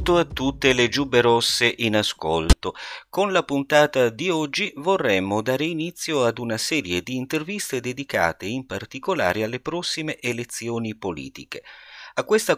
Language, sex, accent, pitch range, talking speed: Italian, male, native, 90-130 Hz, 140 wpm